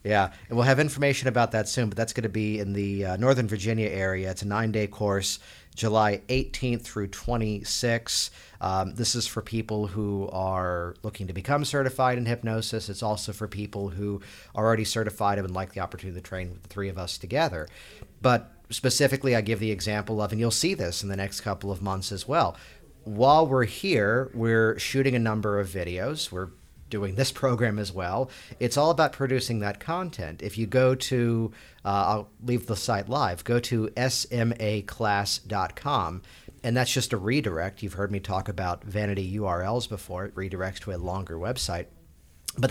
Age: 50-69